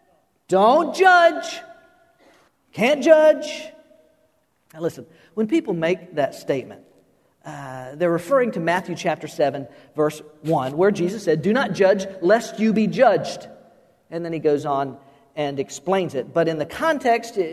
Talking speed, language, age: 145 wpm, English, 50-69